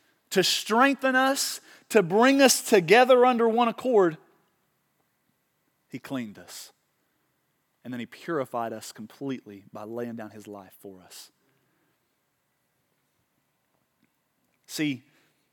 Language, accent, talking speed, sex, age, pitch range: English, American, 105 wpm, male, 30-49, 125-190 Hz